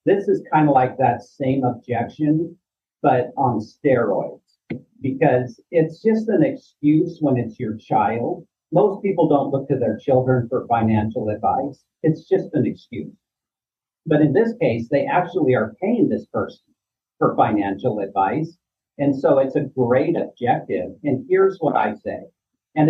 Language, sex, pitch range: English, male, 125-160 Hz